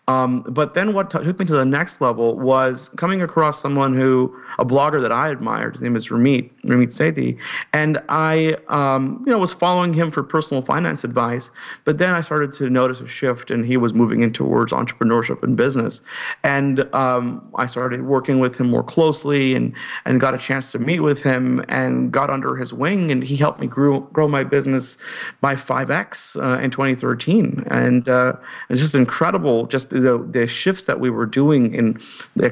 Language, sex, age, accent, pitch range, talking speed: English, male, 40-59, American, 125-150 Hz, 195 wpm